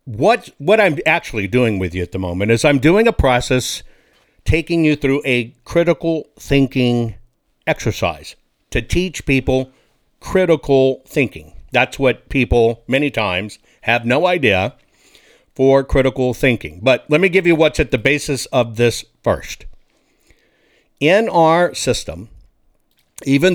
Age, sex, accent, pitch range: 60-79, male, American, 125-165 Hz